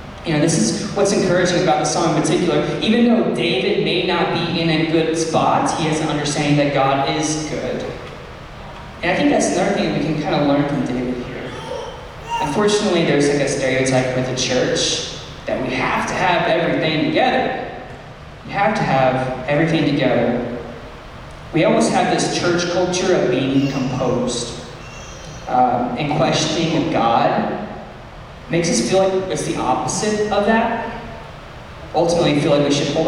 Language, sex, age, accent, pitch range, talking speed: English, male, 20-39, American, 130-165 Hz, 170 wpm